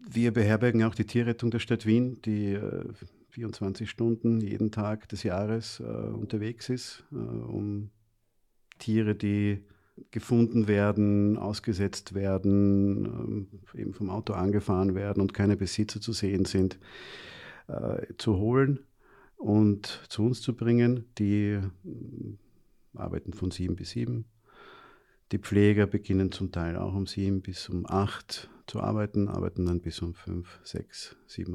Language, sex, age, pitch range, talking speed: German, male, 50-69, 95-110 Hz, 140 wpm